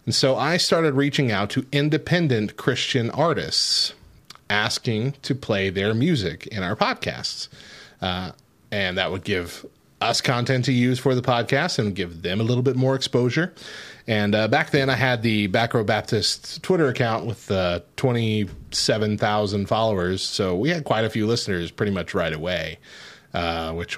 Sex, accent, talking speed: male, American, 165 wpm